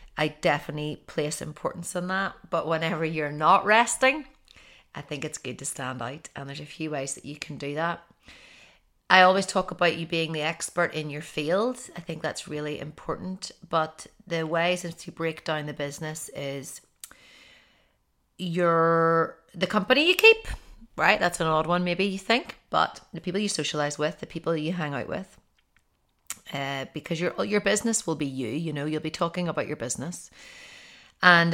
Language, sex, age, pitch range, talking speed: English, female, 30-49, 150-185 Hz, 180 wpm